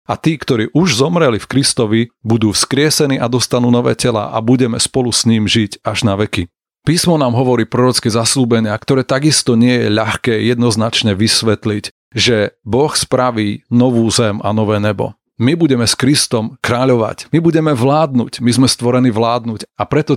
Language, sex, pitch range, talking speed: Slovak, male, 115-130 Hz, 165 wpm